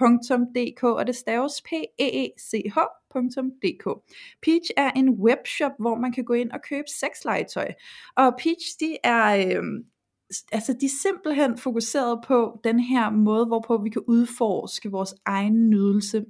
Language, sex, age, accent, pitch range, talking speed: Danish, female, 20-39, native, 210-260 Hz, 145 wpm